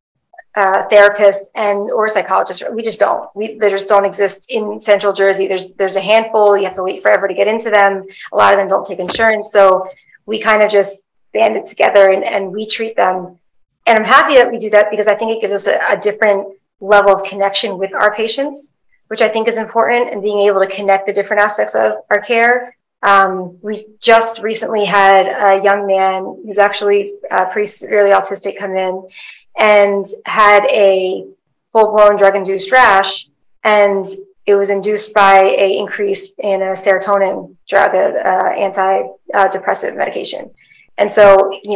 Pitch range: 195-220 Hz